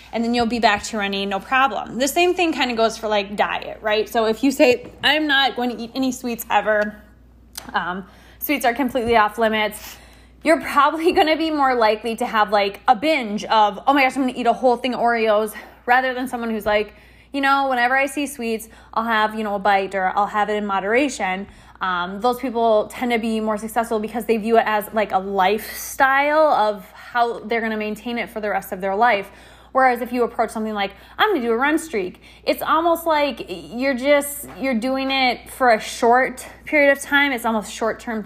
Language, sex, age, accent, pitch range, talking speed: English, female, 20-39, American, 210-265 Hz, 220 wpm